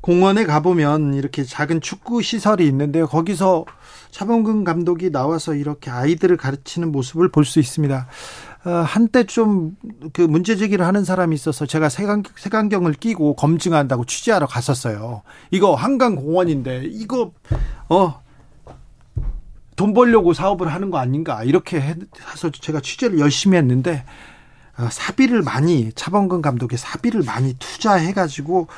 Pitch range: 135-190 Hz